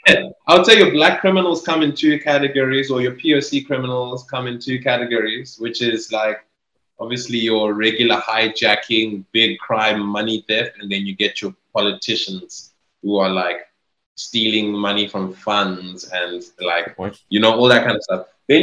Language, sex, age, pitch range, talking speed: English, male, 20-39, 100-125 Hz, 170 wpm